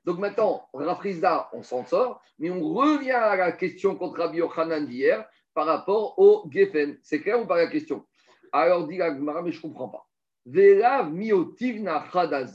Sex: male